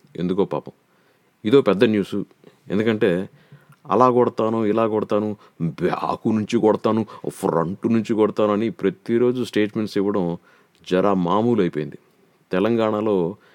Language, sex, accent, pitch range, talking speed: Telugu, male, native, 95-125 Hz, 105 wpm